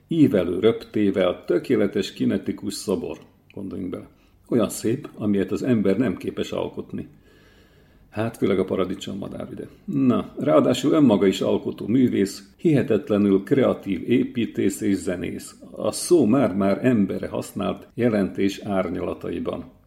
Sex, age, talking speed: male, 50-69, 120 wpm